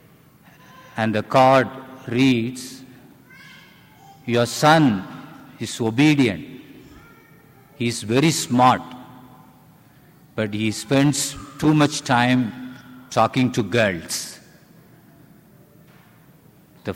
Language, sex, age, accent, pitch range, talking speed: English, male, 50-69, Indian, 115-150 Hz, 80 wpm